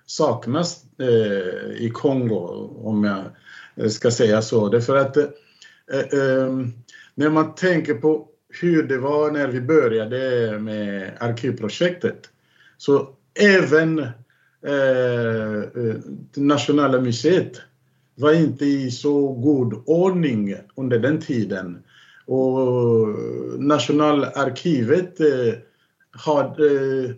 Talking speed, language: 85 wpm, English